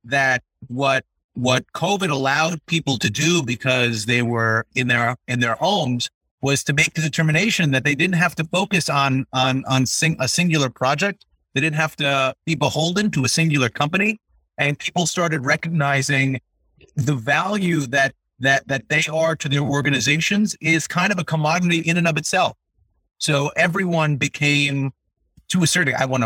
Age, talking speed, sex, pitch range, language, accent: 30-49, 170 wpm, male, 130-165 Hz, English, American